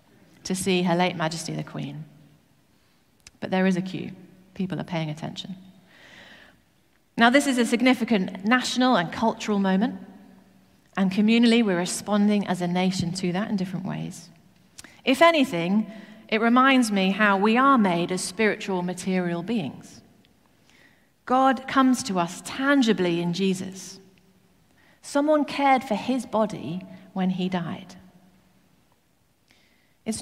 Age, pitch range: 40-59, 180-230 Hz